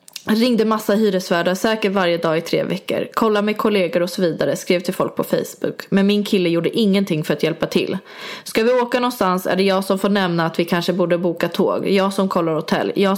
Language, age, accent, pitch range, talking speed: English, 20-39, Swedish, 175-215 Hz, 230 wpm